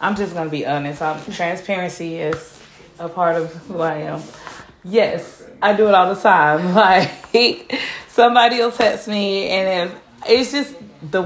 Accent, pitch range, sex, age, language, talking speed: American, 165-215 Hz, female, 20-39, English, 160 wpm